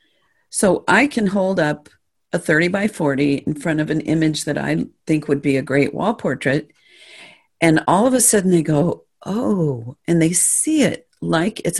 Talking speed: 190 wpm